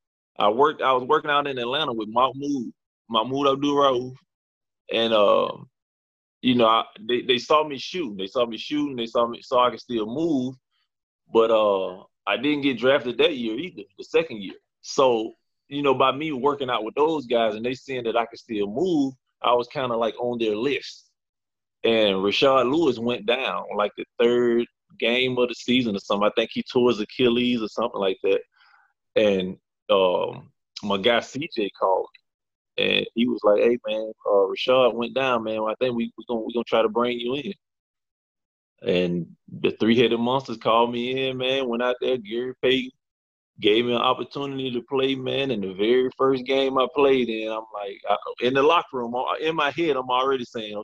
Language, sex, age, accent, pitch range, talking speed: English, male, 20-39, American, 115-140 Hz, 200 wpm